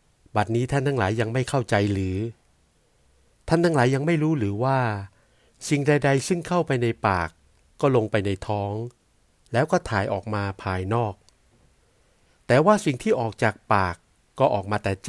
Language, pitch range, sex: Thai, 100-125 Hz, male